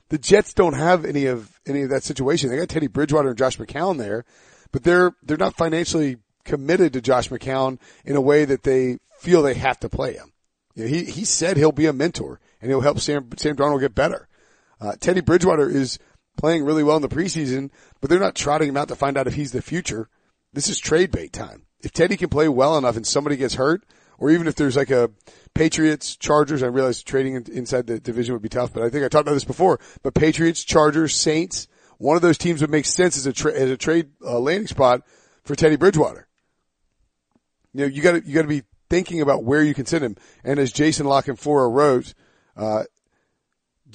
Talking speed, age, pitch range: 225 wpm, 40-59, 130-155 Hz